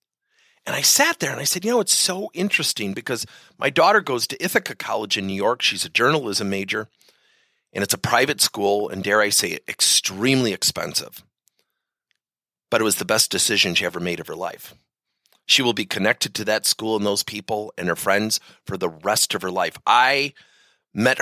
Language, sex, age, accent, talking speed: English, male, 40-59, American, 200 wpm